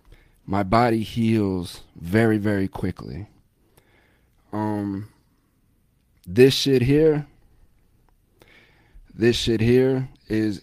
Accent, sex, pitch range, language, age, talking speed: American, male, 95-115 Hz, English, 40-59, 80 wpm